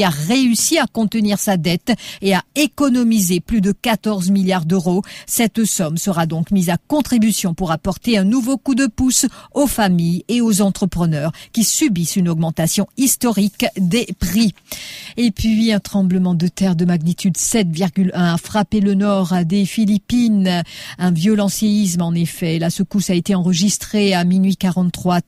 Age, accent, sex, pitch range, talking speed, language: 50-69, French, female, 175-210 Hz, 160 wpm, English